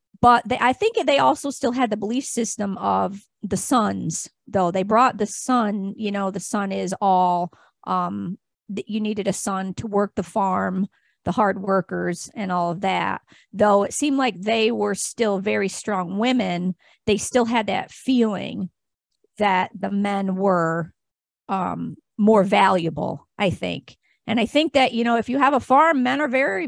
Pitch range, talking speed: 190-240 Hz, 180 wpm